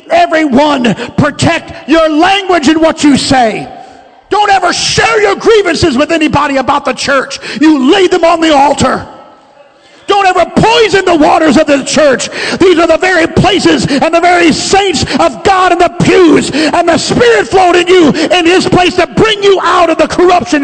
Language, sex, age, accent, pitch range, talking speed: English, male, 50-69, American, 305-380 Hz, 175 wpm